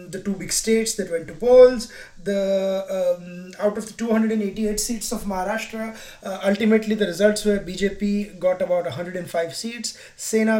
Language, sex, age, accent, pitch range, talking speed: English, male, 20-39, Indian, 185-215 Hz, 160 wpm